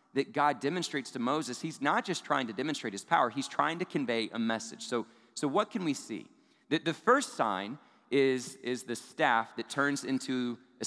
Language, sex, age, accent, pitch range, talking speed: English, male, 40-59, American, 115-155 Hz, 205 wpm